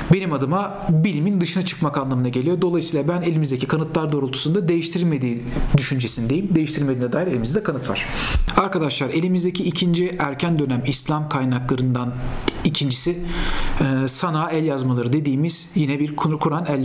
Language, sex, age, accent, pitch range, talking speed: Turkish, male, 40-59, native, 140-180 Hz, 125 wpm